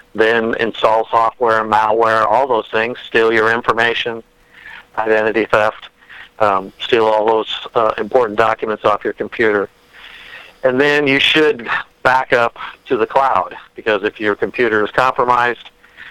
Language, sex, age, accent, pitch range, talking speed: English, male, 50-69, American, 110-130 Hz, 140 wpm